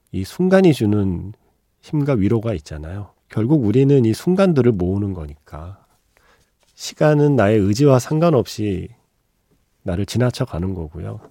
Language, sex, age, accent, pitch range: Korean, male, 40-59, native, 90-135 Hz